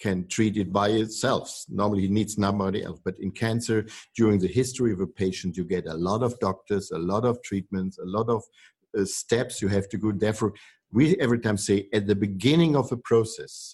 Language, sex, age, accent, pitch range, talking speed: English, male, 50-69, German, 95-115 Hz, 215 wpm